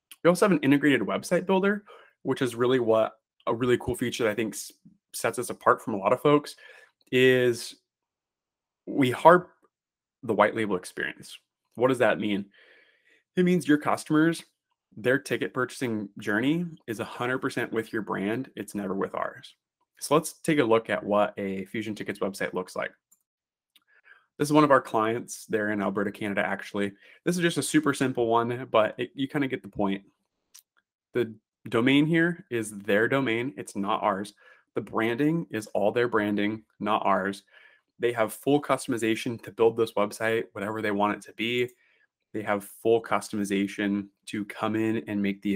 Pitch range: 100-135 Hz